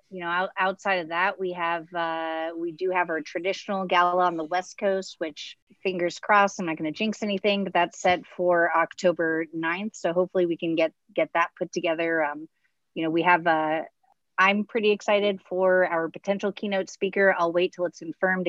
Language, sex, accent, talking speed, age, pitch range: English, female, American, 200 wpm, 30-49, 160-185 Hz